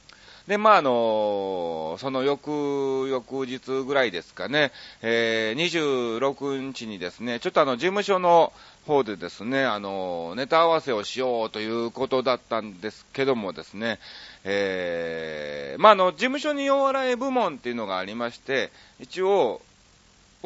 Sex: male